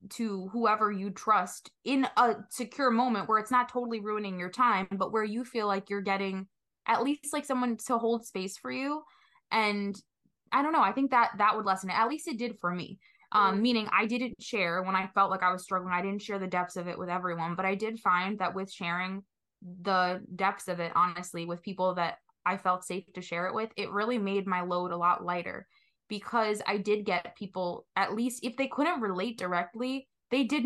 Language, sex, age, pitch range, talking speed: English, female, 20-39, 180-220 Hz, 220 wpm